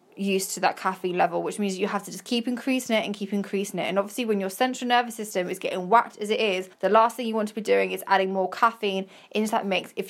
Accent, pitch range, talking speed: British, 195-225 Hz, 280 wpm